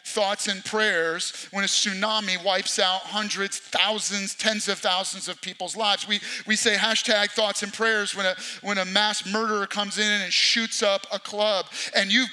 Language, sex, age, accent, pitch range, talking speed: English, male, 40-59, American, 195-235 Hz, 185 wpm